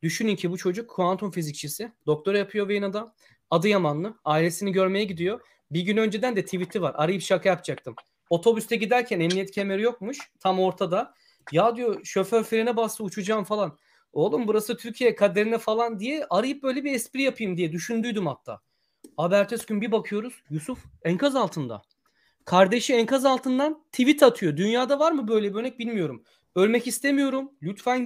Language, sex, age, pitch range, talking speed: Turkish, male, 30-49, 170-235 Hz, 160 wpm